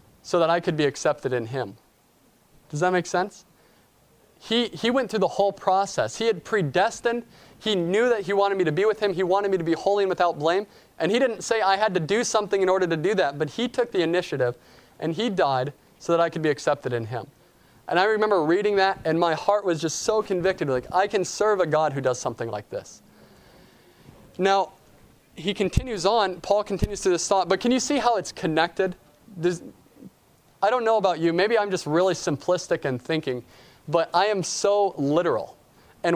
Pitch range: 155-200 Hz